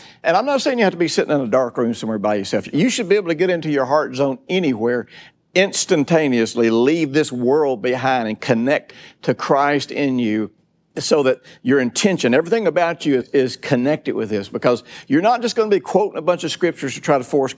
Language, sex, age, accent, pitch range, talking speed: English, male, 60-79, American, 120-185 Hz, 220 wpm